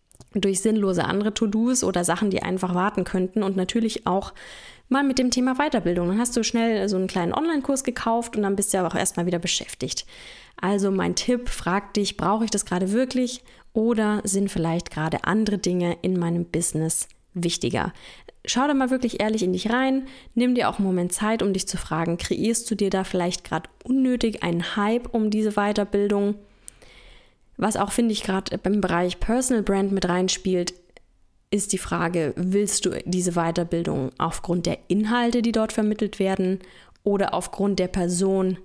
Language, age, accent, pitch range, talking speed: German, 20-39, German, 180-220 Hz, 180 wpm